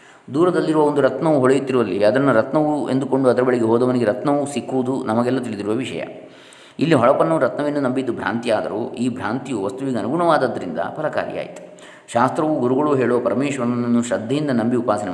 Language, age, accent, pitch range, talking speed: Kannada, 20-39, native, 115-140 Hz, 125 wpm